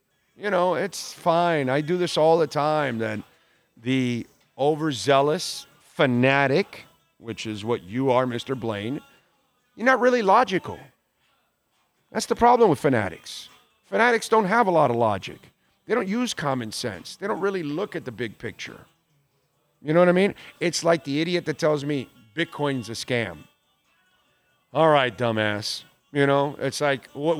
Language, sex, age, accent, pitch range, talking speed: English, male, 40-59, American, 135-175 Hz, 160 wpm